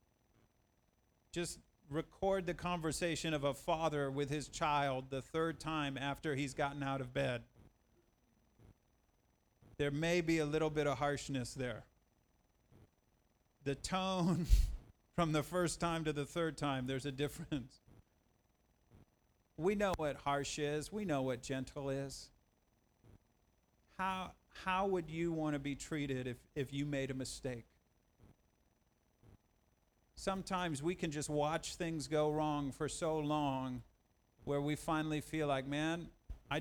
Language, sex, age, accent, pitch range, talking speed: English, male, 50-69, American, 135-170 Hz, 135 wpm